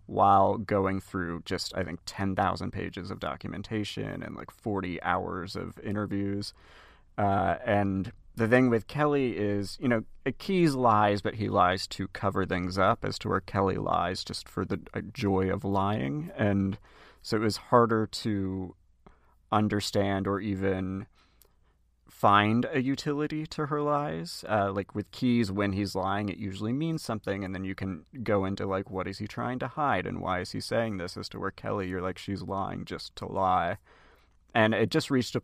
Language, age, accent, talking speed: English, 30-49, American, 180 wpm